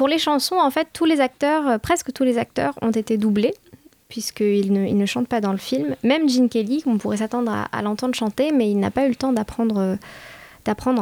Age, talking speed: 20-39, 245 wpm